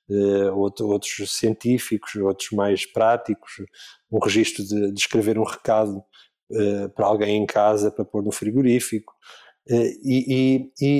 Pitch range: 115-135 Hz